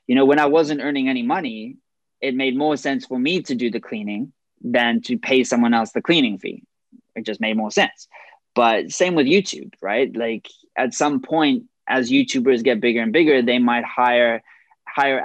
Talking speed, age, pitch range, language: 195 wpm, 20-39, 115-140 Hz, English